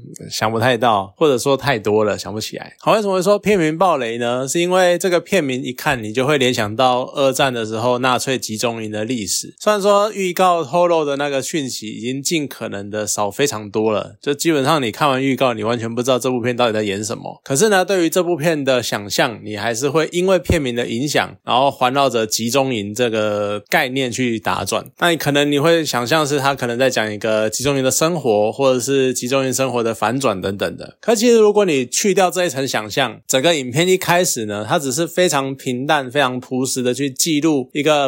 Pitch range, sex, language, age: 115-160 Hz, male, Chinese, 20-39